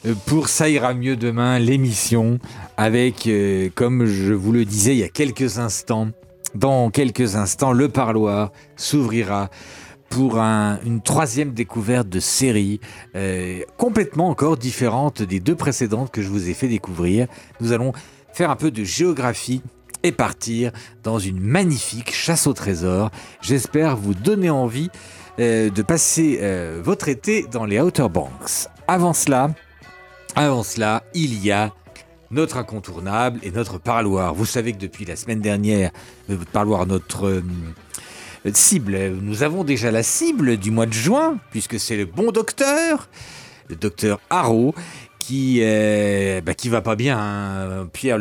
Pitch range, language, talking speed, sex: 105-135 Hz, French, 155 wpm, male